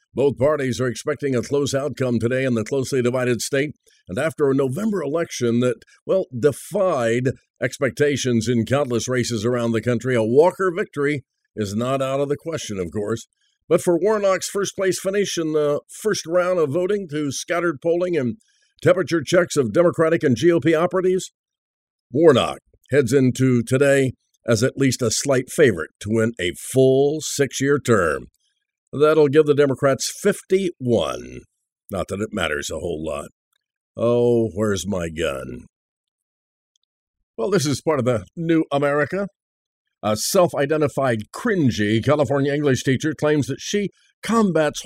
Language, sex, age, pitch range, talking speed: English, male, 50-69, 120-170 Hz, 150 wpm